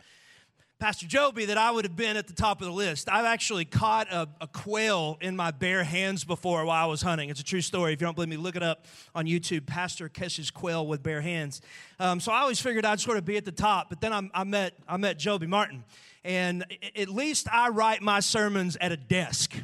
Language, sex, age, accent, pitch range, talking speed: English, male, 30-49, American, 165-220 Hz, 240 wpm